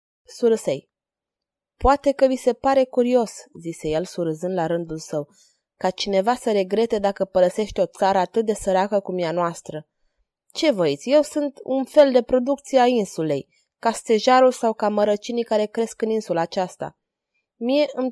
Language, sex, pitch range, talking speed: Romanian, female, 195-250 Hz, 160 wpm